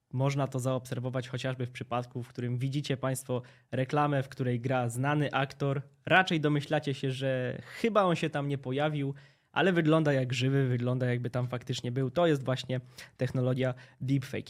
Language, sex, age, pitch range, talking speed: Polish, male, 20-39, 125-145 Hz, 165 wpm